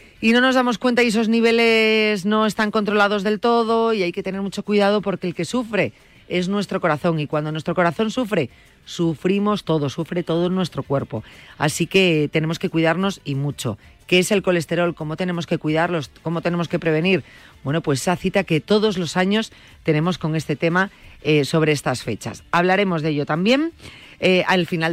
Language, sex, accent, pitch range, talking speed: Spanish, female, Spanish, 155-200 Hz, 190 wpm